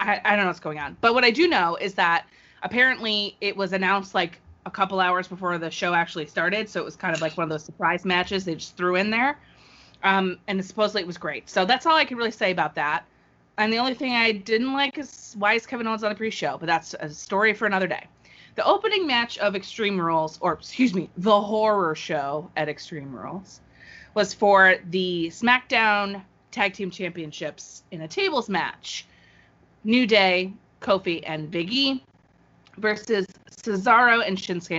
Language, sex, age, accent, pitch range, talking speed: English, female, 30-49, American, 170-220 Hz, 200 wpm